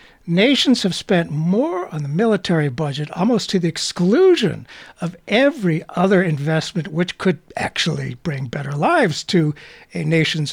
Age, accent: 60-79, American